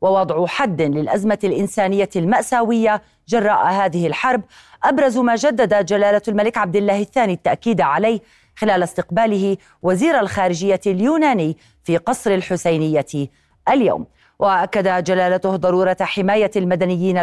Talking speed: 110 wpm